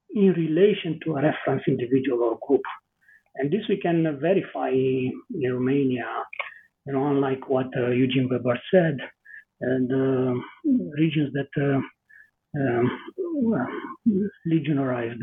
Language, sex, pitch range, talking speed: English, male, 130-165 Hz, 130 wpm